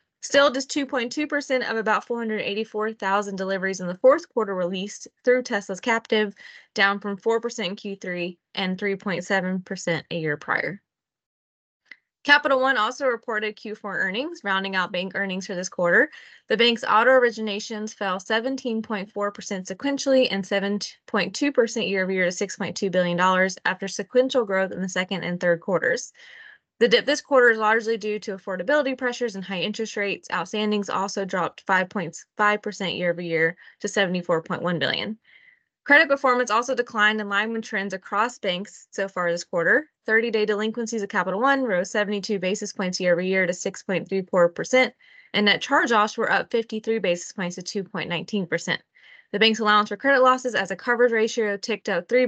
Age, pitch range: 20-39, 190-235 Hz